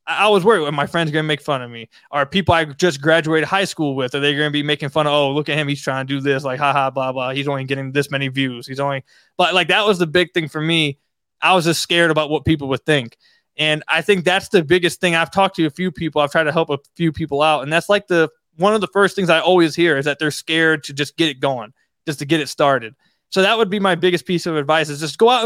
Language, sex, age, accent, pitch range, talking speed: English, male, 20-39, American, 145-185 Hz, 300 wpm